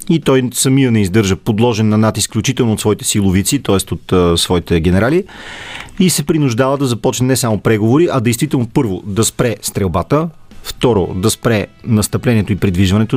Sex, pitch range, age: male, 105-140 Hz, 40-59